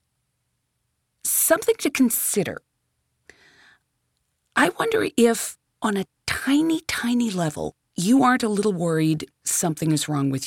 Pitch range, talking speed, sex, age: 160-230 Hz, 115 wpm, female, 40-59